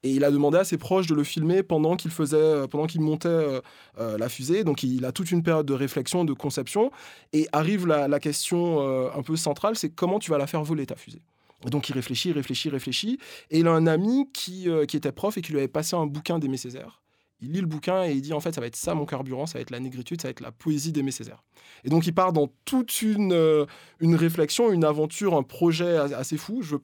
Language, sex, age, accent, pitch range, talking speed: French, male, 20-39, French, 140-170 Hz, 260 wpm